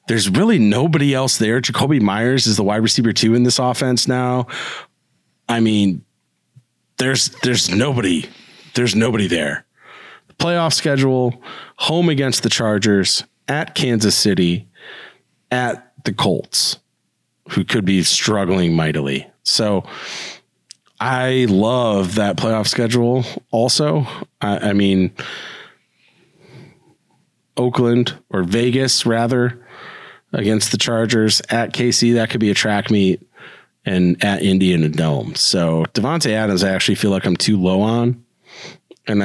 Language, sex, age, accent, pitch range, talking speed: English, male, 40-59, American, 100-125 Hz, 125 wpm